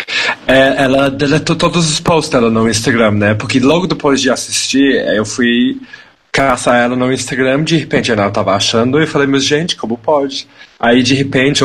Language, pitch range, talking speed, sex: Portuguese, 105-135 Hz, 175 wpm, male